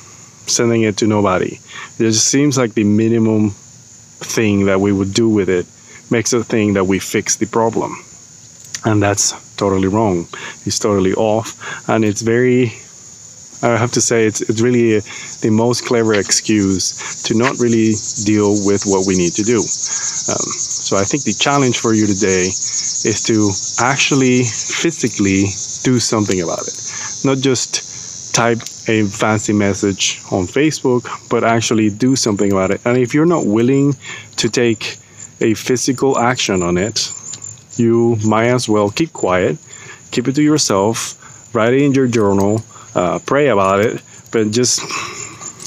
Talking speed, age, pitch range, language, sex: 160 wpm, 30-49, 105-125 Hz, English, male